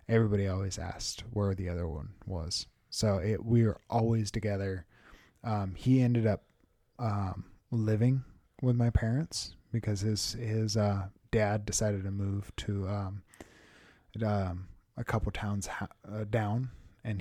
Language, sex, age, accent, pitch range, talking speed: English, male, 10-29, American, 100-115 Hz, 135 wpm